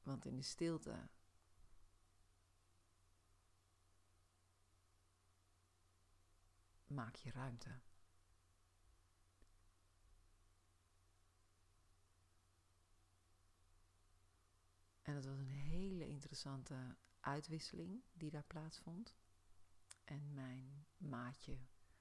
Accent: Dutch